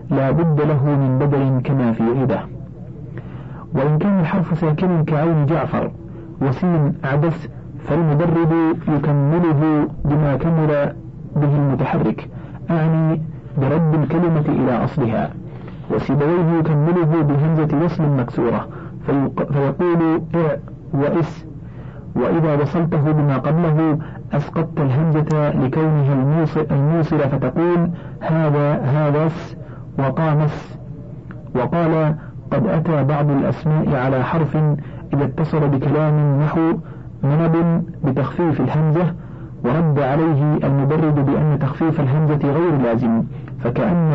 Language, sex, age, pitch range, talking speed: Arabic, male, 50-69, 140-160 Hz, 95 wpm